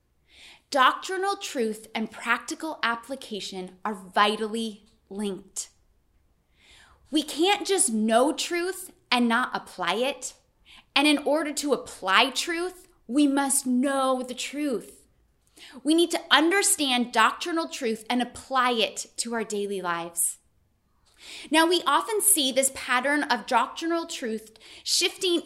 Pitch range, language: 205-295 Hz, English